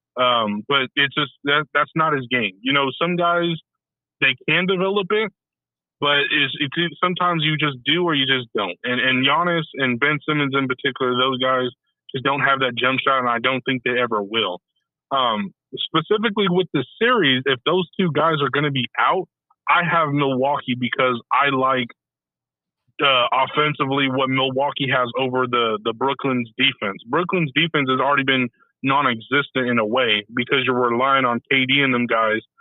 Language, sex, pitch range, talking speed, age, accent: English, male, 125-155 Hz, 180 wpm, 20-39, American